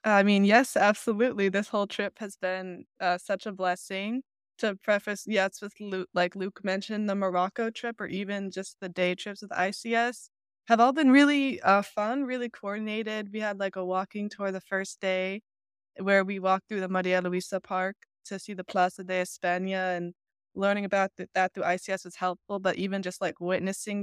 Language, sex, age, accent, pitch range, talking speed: English, female, 20-39, American, 180-210 Hz, 190 wpm